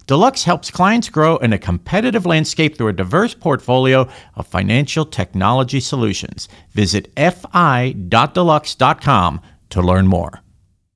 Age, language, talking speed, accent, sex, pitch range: 50-69, English, 115 wpm, American, male, 115-180 Hz